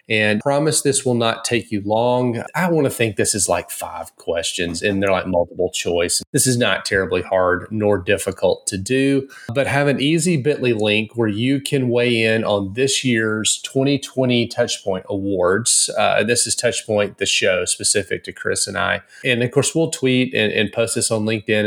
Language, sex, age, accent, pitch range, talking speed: English, male, 30-49, American, 100-125 Hz, 195 wpm